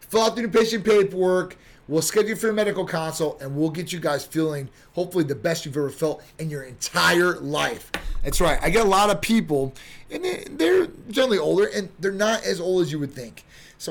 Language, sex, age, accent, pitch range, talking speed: English, male, 30-49, American, 140-190 Hz, 215 wpm